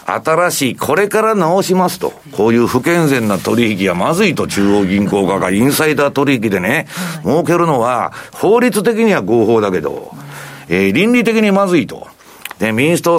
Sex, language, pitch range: male, Japanese, 120-180 Hz